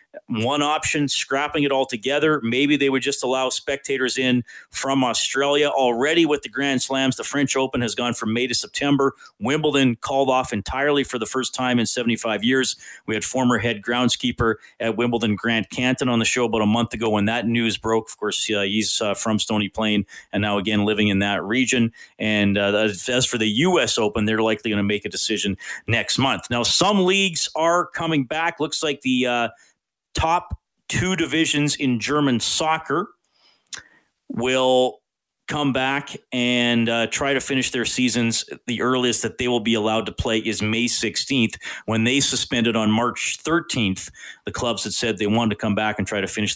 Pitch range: 110-140 Hz